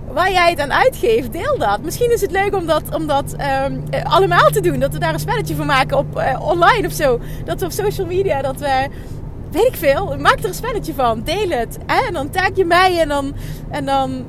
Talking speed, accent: 240 wpm, Dutch